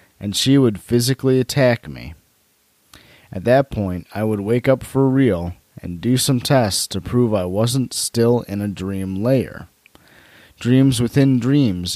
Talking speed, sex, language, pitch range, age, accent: 155 wpm, male, English, 95-125 Hz, 30-49, American